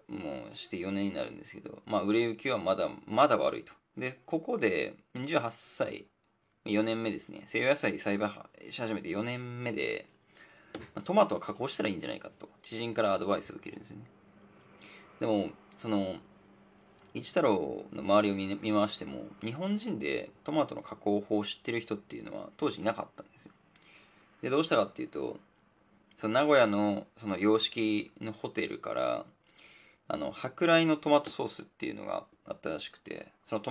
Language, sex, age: Japanese, male, 20-39